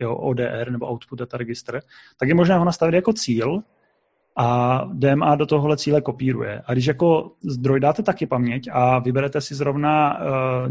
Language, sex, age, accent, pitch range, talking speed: Czech, male, 30-49, native, 125-150 Hz, 170 wpm